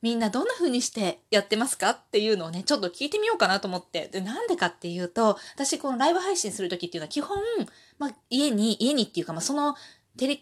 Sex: female